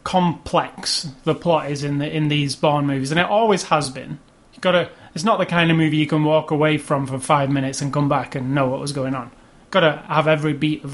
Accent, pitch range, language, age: British, 140-170 Hz, English, 30-49